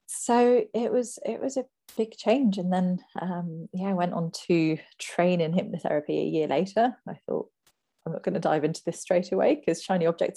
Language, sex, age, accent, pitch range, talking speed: English, female, 30-49, British, 165-225 Hz, 205 wpm